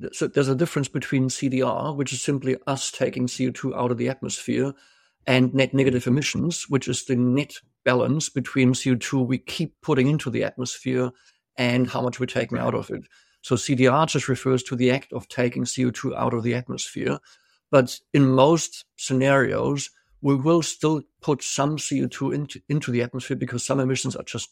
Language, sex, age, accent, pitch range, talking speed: English, male, 60-79, German, 125-145 Hz, 180 wpm